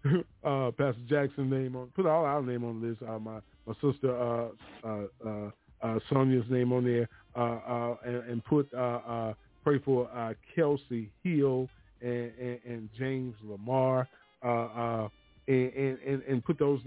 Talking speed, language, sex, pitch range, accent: 170 wpm, English, male, 115-130 Hz, American